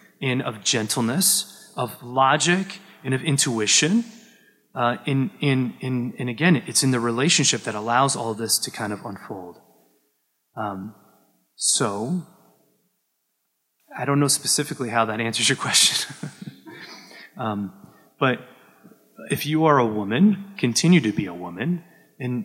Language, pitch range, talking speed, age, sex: English, 110-140 Hz, 135 wpm, 30-49, male